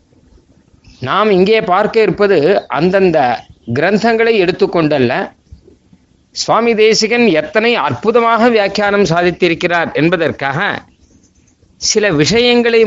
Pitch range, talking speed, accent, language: 145-210 Hz, 75 wpm, native, Tamil